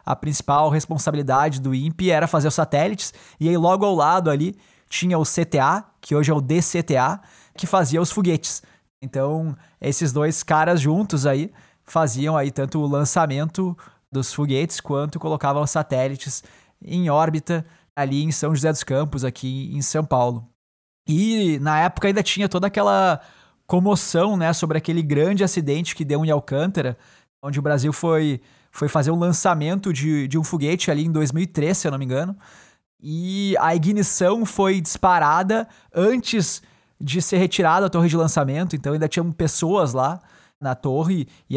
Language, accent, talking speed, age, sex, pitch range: Portuguese, Brazilian, 165 wpm, 20-39, male, 140-175 Hz